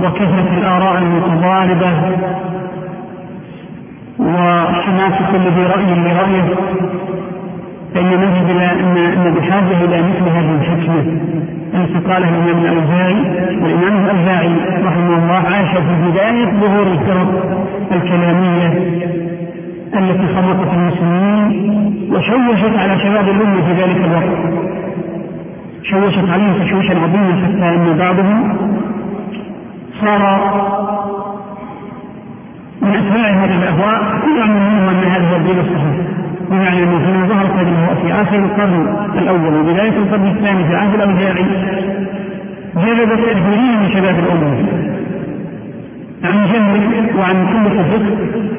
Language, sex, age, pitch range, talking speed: Arabic, male, 50-69, 180-205 Hz, 90 wpm